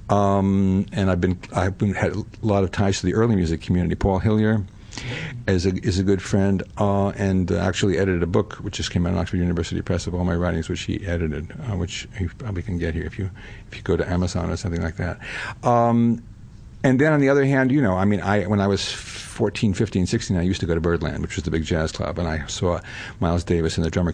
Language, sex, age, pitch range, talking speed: English, male, 60-79, 90-110 Hz, 250 wpm